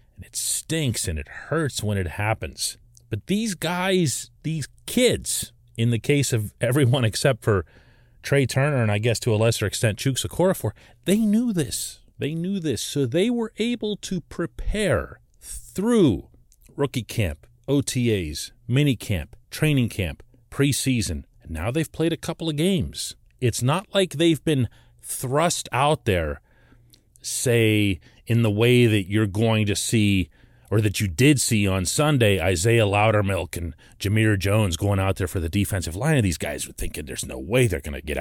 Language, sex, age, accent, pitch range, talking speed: English, male, 40-59, American, 100-140 Hz, 170 wpm